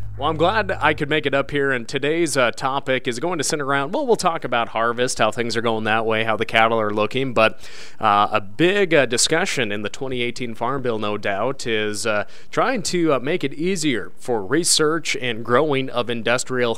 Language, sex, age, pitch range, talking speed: English, male, 30-49, 115-155 Hz, 220 wpm